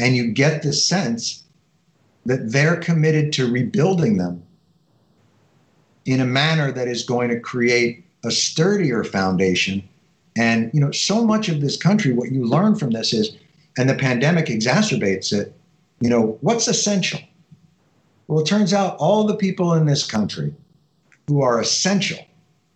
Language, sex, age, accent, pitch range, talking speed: English, male, 60-79, American, 130-170 Hz, 155 wpm